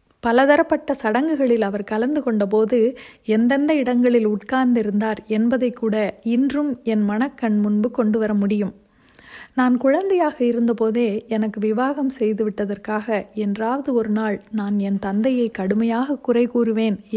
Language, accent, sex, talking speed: Tamil, native, female, 115 wpm